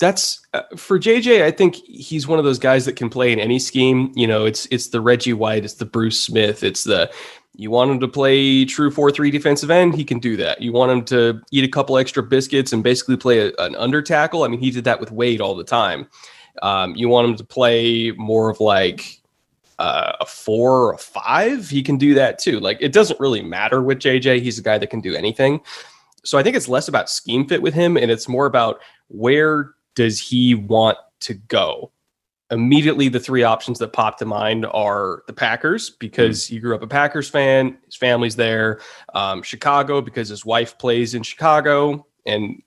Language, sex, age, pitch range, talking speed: English, male, 20-39, 115-140 Hz, 215 wpm